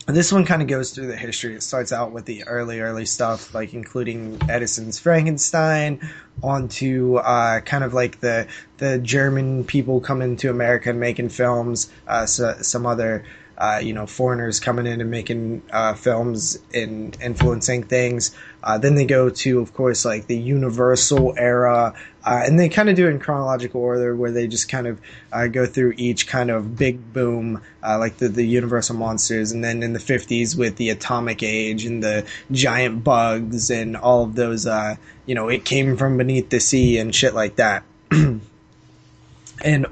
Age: 20-39